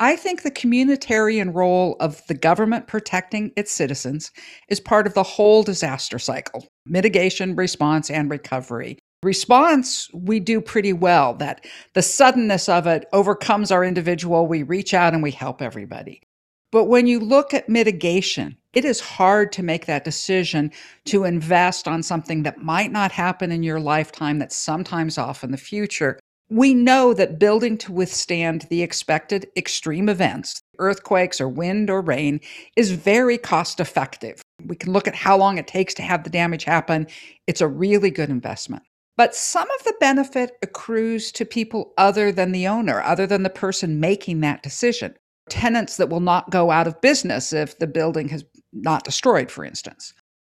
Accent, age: American, 50-69